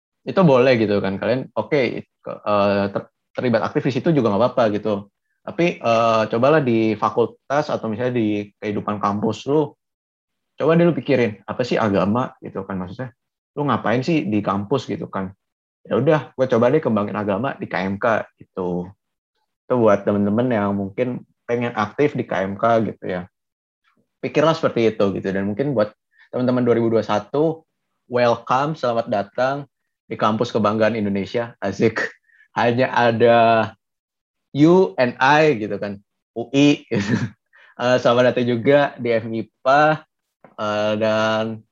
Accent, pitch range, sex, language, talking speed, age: native, 100-125 Hz, male, Indonesian, 135 wpm, 20-39